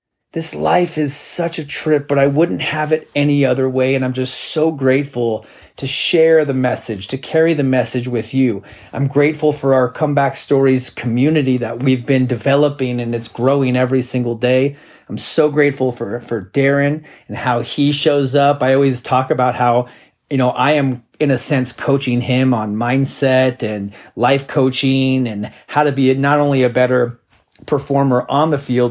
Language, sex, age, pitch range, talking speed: English, male, 30-49, 125-145 Hz, 185 wpm